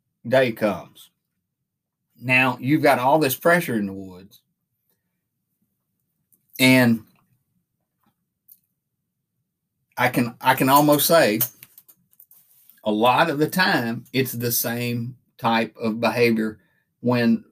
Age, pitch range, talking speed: 50-69, 115-155 Hz, 105 wpm